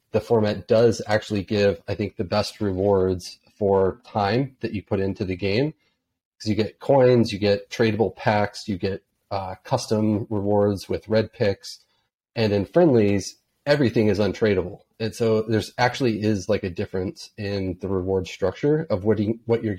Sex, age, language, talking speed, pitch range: male, 30-49, English, 175 wpm, 95-115 Hz